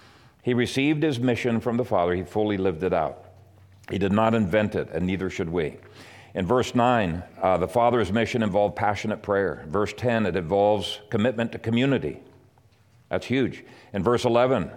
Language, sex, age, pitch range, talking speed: English, male, 50-69, 105-125 Hz, 180 wpm